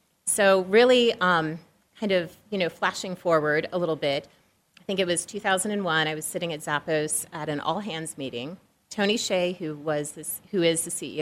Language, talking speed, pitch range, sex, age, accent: English, 195 wpm, 155-185 Hz, female, 30-49, American